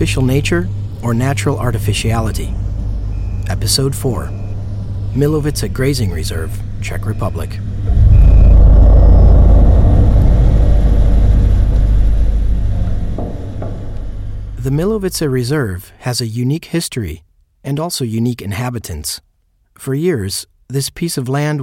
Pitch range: 95-135 Hz